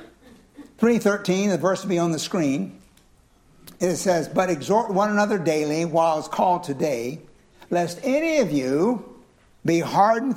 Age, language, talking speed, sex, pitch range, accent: 60-79, English, 145 wpm, male, 165-220 Hz, American